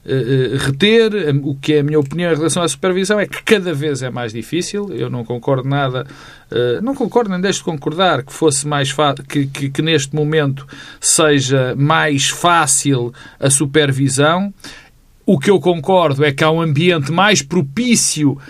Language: Portuguese